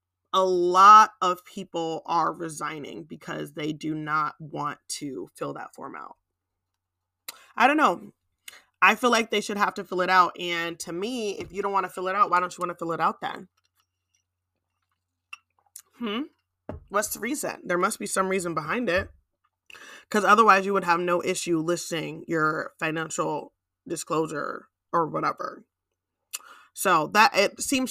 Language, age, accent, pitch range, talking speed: English, 20-39, American, 160-195 Hz, 165 wpm